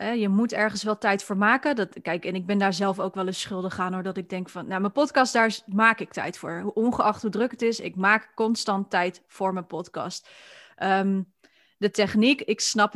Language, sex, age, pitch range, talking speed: Dutch, female, 30-49, 190-225 Hz, 215 wpm